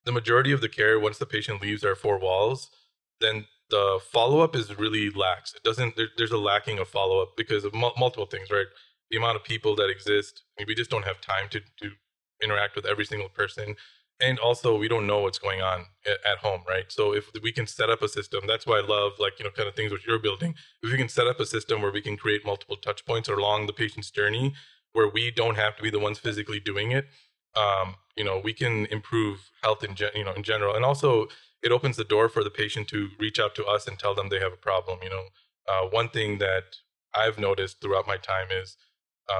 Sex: male